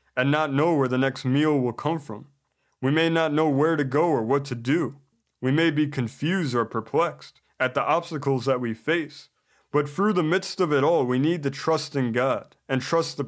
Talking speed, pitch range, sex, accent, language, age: 220 wpm, 135-165 Hz, male, American, English, 20-39